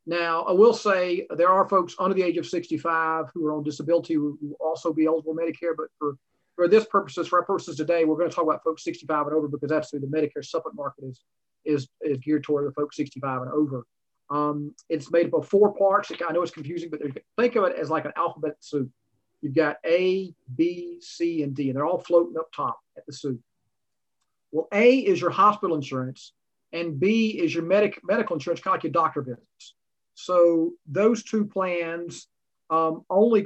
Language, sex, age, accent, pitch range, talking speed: English, male, 40-59, American, 150-180 Hz, 210 wpm